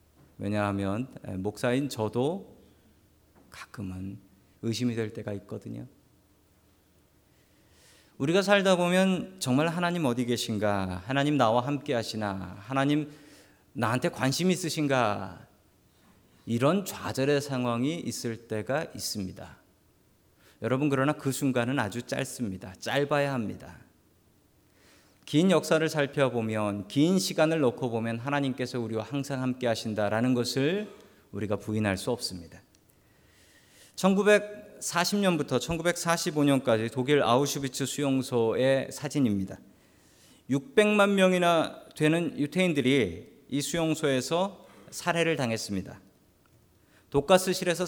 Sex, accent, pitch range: male, native, 105-150 Hz